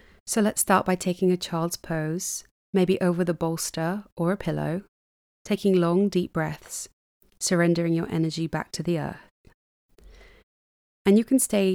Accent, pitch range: British, 155-180 Hz